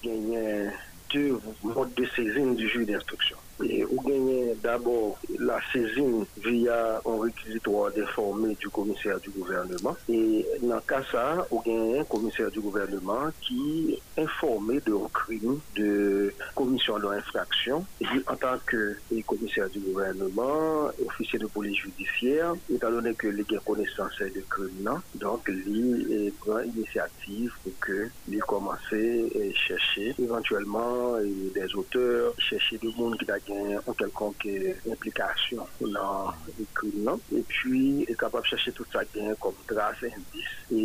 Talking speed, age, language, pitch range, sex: 145 wpm, 50-69, French, 105-145 Hz, male